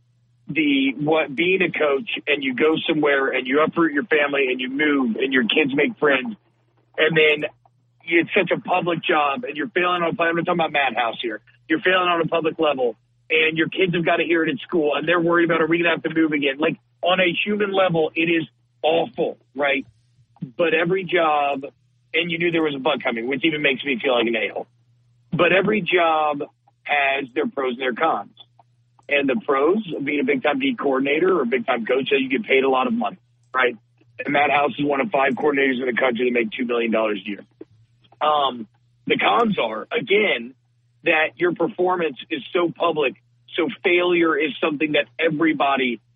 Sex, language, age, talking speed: male, English, 40-59, 215 wpm